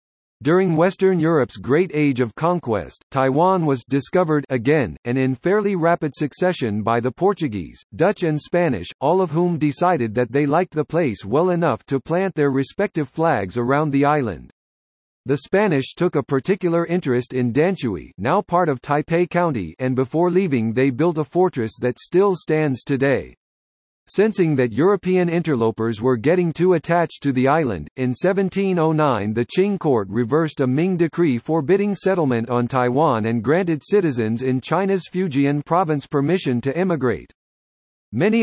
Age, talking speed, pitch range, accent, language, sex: 50-69, 155 wpm, 125-175 Hz, American, English, male